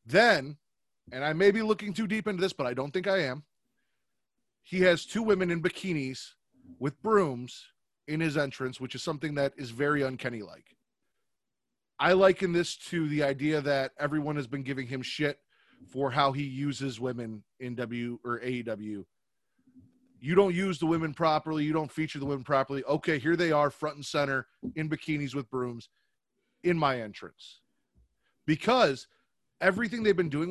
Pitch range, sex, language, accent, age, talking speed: 135-180 Hz, male, English, American, 30-49, 170 wpm